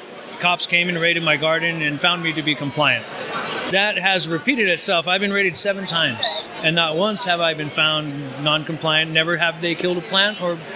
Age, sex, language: 30-49, male, English